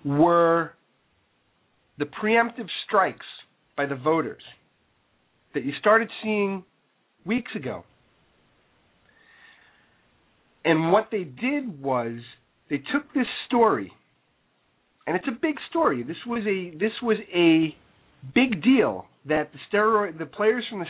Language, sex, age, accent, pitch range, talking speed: English, male, 40-59, American, 135-195 Hz, 120 wpm